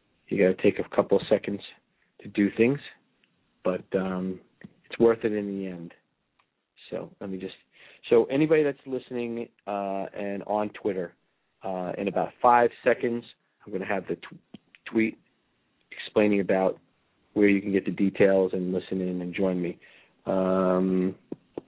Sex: male